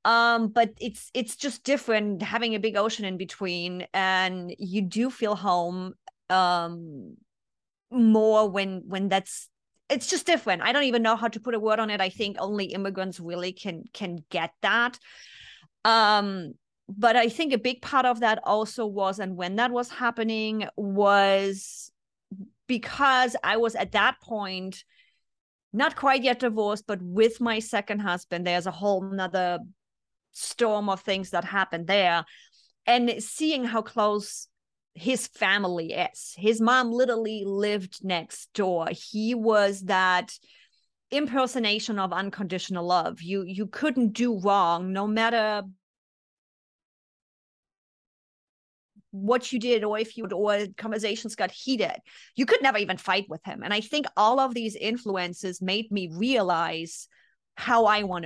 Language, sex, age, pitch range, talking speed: English, female, 30-49, 190-235 Hz, 145 wpm